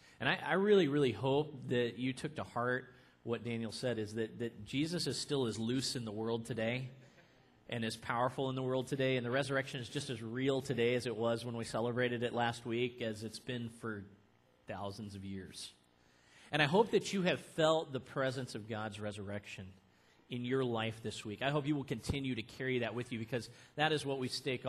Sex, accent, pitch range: male, American, 110-145 Hz